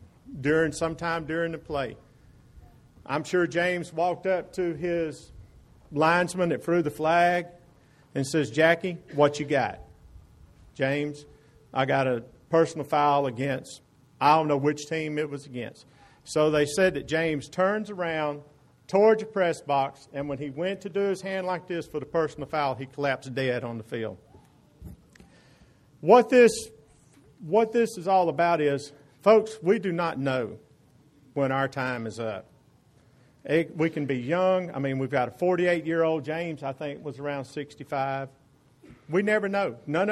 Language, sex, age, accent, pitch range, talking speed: English, male, 50-69, American, 135-170 Hz, 160 wpm